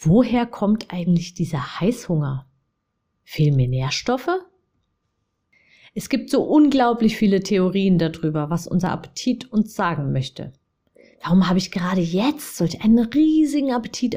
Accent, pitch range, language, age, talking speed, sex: German, 175-250 Hz, German, 30-49, 125 wpm, female